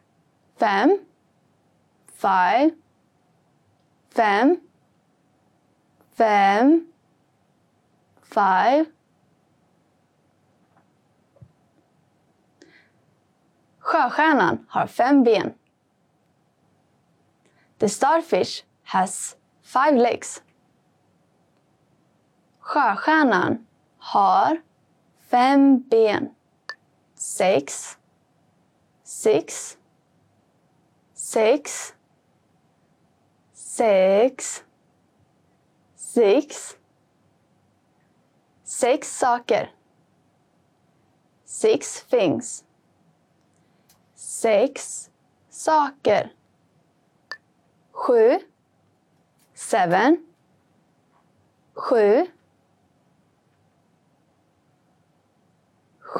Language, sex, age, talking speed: English, female, 20-39, 35 wpm